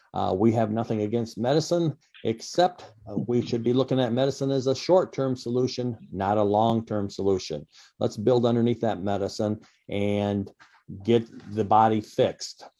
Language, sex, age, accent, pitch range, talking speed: English, male, 50-69, American, 120-160 Hz, 150 wpm